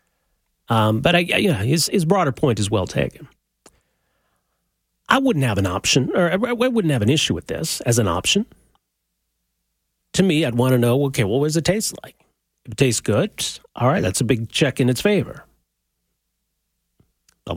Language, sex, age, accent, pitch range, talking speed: English, male, 40-59, American, 115-160 Hz, 190 wpm